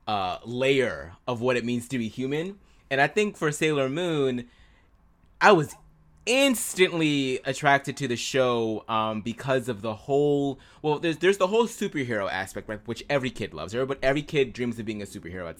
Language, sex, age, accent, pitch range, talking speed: English, male, 20-39, American, 120-165 Hz, 185 wpm